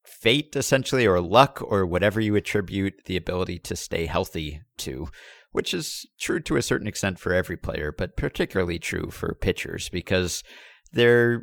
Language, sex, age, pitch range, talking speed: English, male, 50-69, 80-105 Hz, 165 wpm